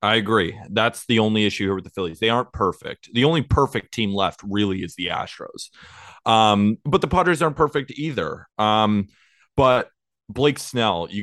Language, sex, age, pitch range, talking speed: English, male, 20-39, 90-110 Hz, 180 wpm